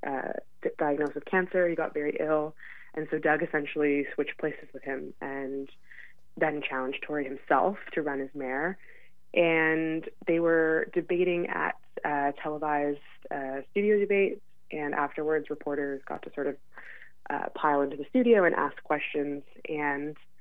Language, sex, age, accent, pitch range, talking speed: English, female, 20-39, American, 145-165 Hz, 150 wpm